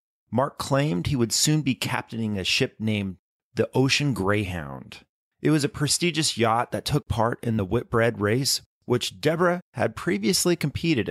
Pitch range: 100-130 Hz